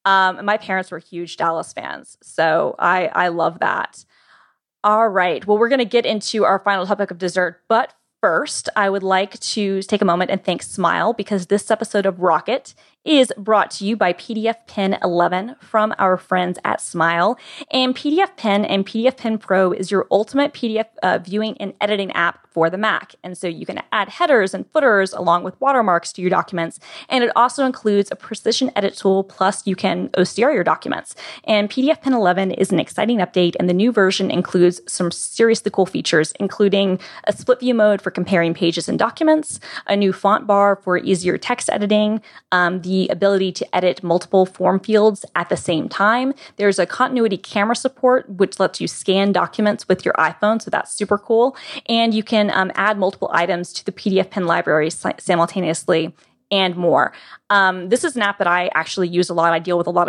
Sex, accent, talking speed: female, American, 200 wpm